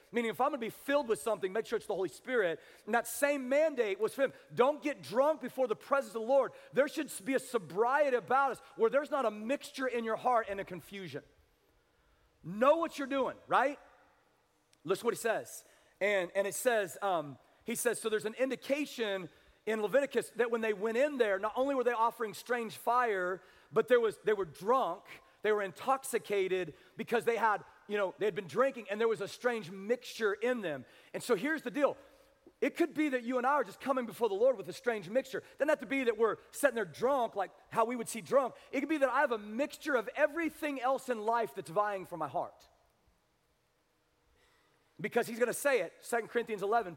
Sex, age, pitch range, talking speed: male, 40-59, 205-275 Hz, 225 wpm